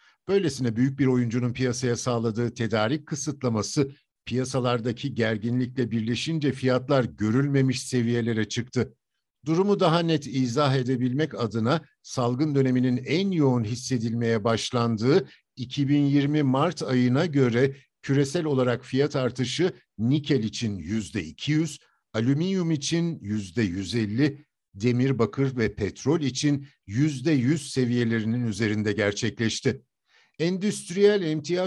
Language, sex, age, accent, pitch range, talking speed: Turkish, male, 60-79, native, 115-150 Hz, 100 wpm